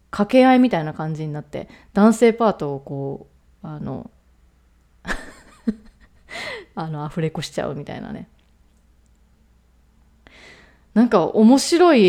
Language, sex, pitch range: Japanese, female, 150-225 Hz